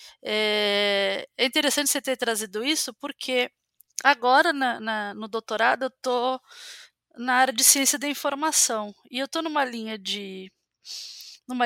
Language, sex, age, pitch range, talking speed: Portuguese, female, 20-39, 220-285 Hz, 125 wpm